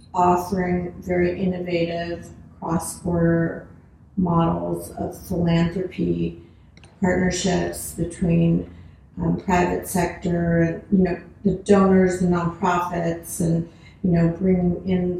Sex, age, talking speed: female, 40-59, 95 wpm